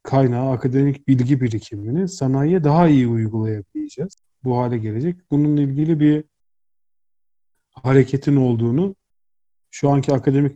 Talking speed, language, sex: 110 wpm, Turkish, male